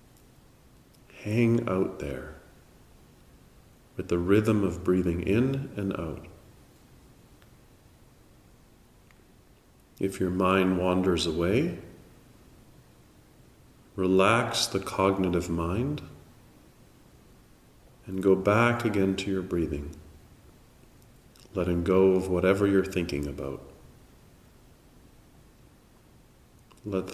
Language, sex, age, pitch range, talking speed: English, male, 40-59, 85-110 Hz, 75 wpm